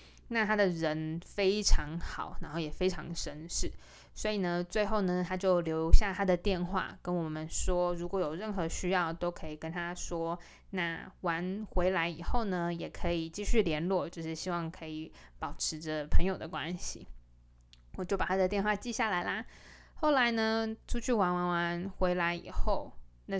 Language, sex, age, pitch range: Chinese, female, 20-39, 165-200 Hz